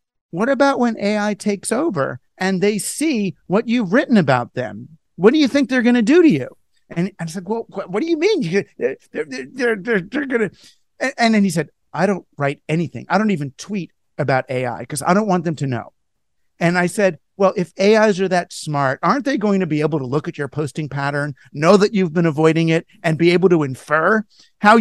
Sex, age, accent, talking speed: male, 50-69, American, 210 wpm